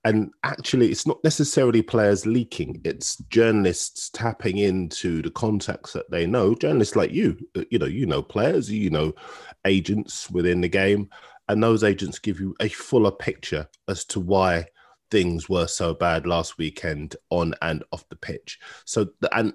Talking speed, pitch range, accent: 165 wpm, 85-110 Hz, British